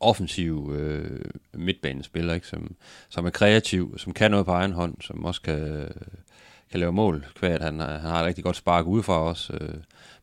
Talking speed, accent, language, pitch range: 180 wpm, native, Danish, 80-90 Hz